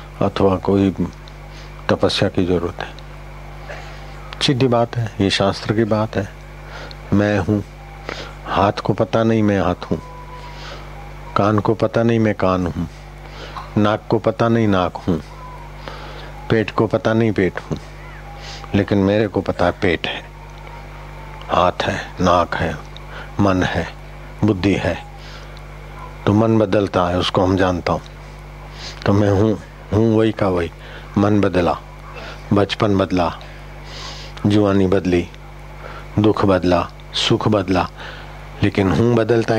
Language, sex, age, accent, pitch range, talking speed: Hindi, male, 50-69, native, 95-110 Hz, 130 wpm